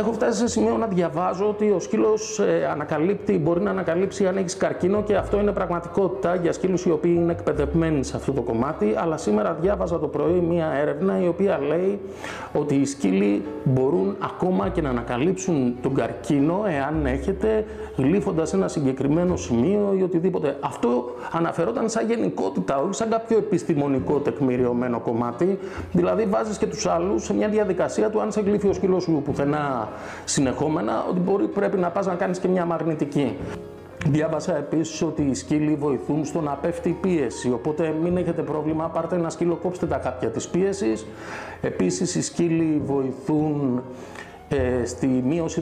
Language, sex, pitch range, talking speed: Greek, male, 135-185 Hz, 165 wpm